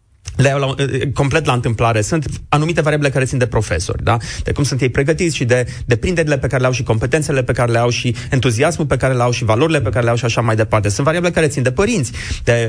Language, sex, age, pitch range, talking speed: Romanian, male, 30-49, 120-150 Hz, 265 wpm